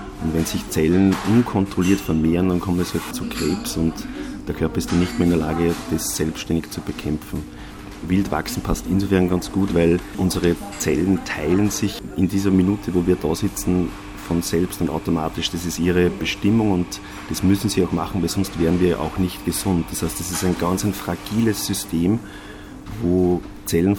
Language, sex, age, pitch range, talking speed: German, male, 40-59, 85-100 Hz, 190 wpm